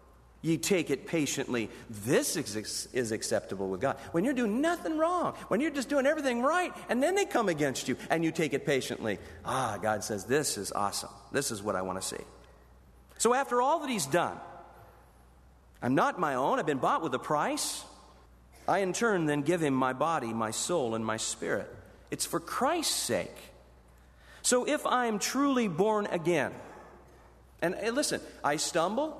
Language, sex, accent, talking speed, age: English, male, American, 180 wpm, 50-69